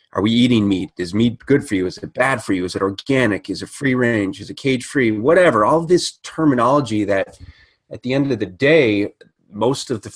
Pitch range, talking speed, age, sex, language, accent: 95-115 Hz, 230 wpm, 30-49, male, English, American